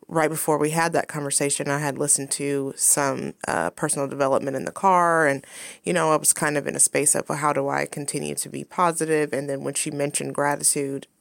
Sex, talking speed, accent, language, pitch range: female, 220 wpm, American, English, 140-165 Hz